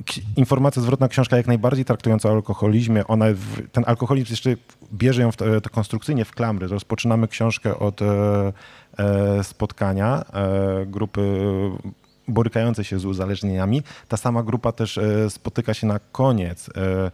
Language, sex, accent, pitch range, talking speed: Polish, male, native, 100-120 Hz, 115 wpm